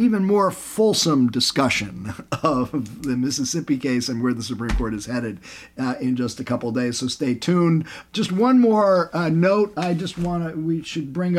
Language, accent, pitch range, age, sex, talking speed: English, American, 135-180 Hz, 50-69, male, 190 wpm